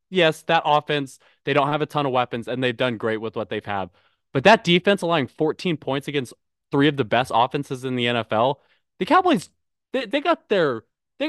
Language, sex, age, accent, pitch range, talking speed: English, male, 20-39, American, 125-170 Hz, 215 wpm